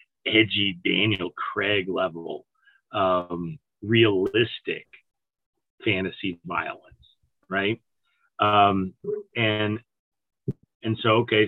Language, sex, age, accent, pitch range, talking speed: English, male, 30-49, American, 110-140 Hz, 75 wpm